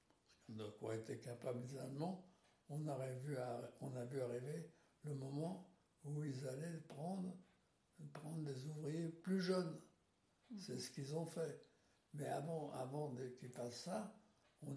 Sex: male